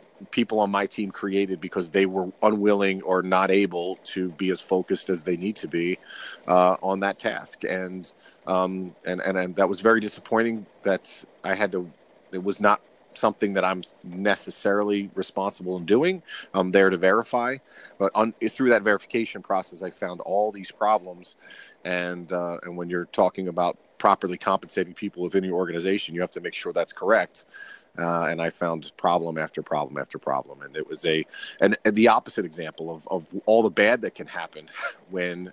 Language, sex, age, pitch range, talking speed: English, male, 40-59, 90-100 Hz, 185 wpm